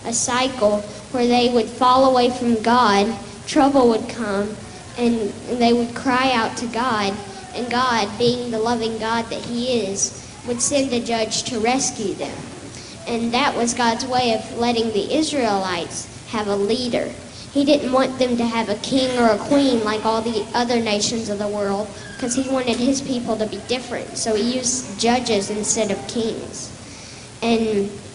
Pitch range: 220-250 Hz